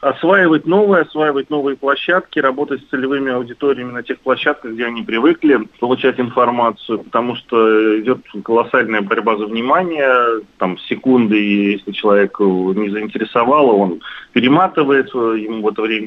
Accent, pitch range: native, 115-145 Hz